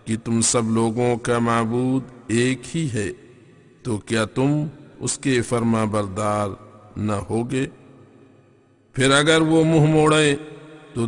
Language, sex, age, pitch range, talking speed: English, male, 50-69, 115-140 Hz, 120 wpm